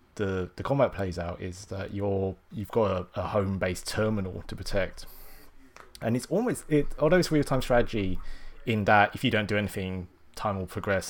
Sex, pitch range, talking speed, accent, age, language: male, 90-105 Hz, 195 wpm, British, 20-39, English